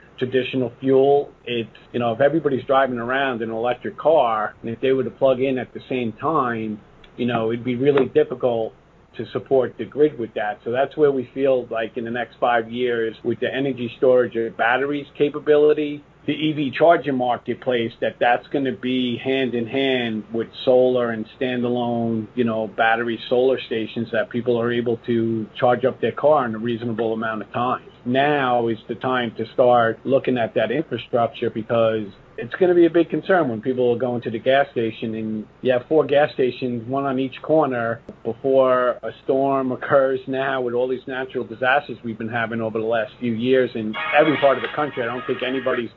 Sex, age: male, 50-69